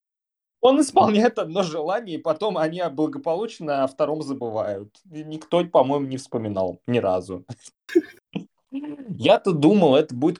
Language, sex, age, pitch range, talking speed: Russian, male, 20-39, 105-160 Hz, 120 wpm